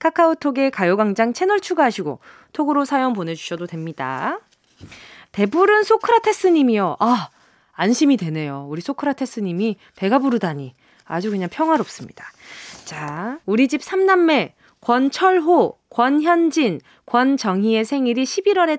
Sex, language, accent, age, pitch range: female, Korean, native, 20-39, 205-320 Hz